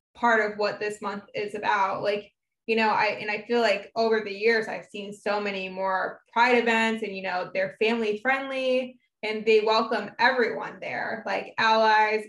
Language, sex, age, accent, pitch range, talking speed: English, female, 10-29, American, 205-230 Hz, 185 wpm